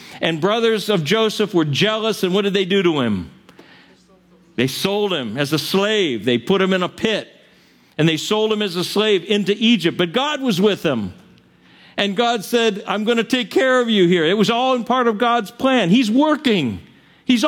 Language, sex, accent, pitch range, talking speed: English, male, American, 180-225 Hz, 210 wpm